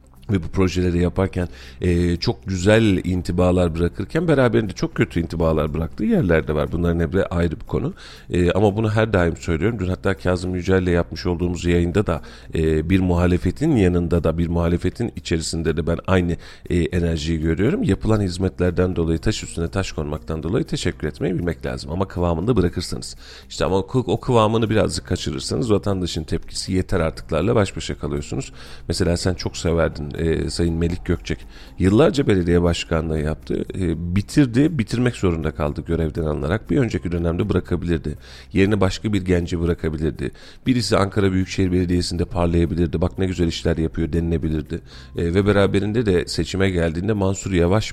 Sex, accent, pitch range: male, native, 80-95 Hz